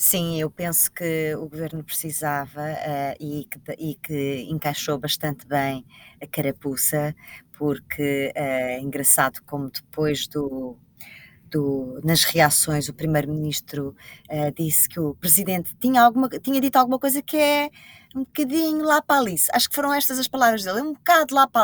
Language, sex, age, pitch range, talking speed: Portuguese, female, 20-39, 150-200 Hz, 140 wpm